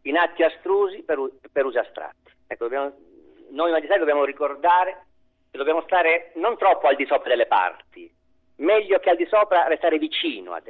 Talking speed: 170 wpm